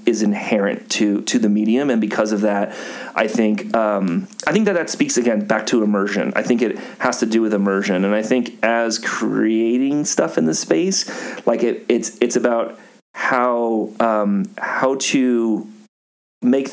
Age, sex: 30-49, male